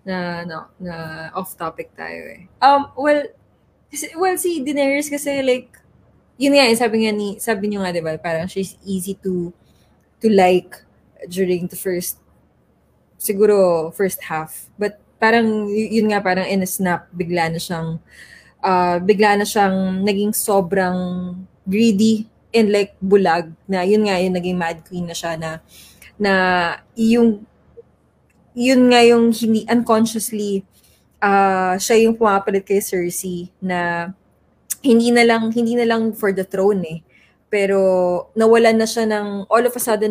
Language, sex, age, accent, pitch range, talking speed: English, female, 20-39, Filipino, 180-220 Hz, 155 wpm